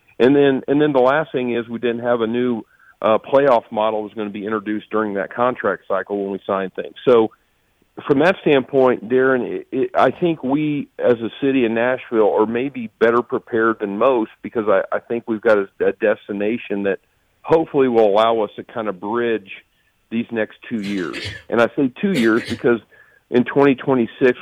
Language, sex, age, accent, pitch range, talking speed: English, male, 50-69, American, 110-135 Hz, 200 wpm